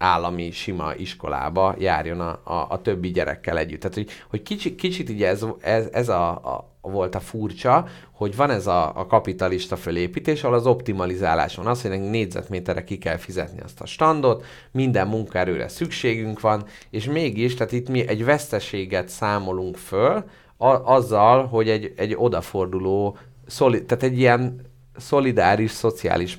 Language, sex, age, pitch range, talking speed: Hungarian, male, 30-49, 95-125 Hz, 155 wpm